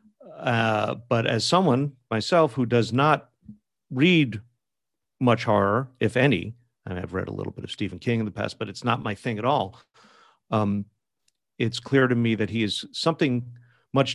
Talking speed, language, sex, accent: 180 wpm, English, male, American